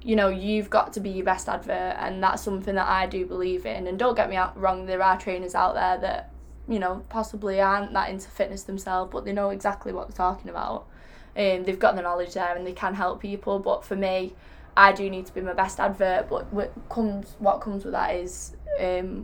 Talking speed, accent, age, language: 235 wpm, British, 10-29, English